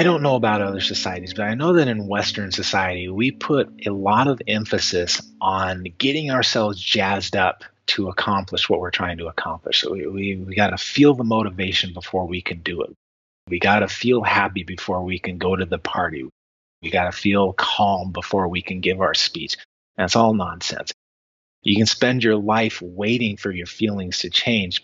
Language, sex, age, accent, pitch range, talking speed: English, male, 30-49, American, 90-110 Hz, 195 wpm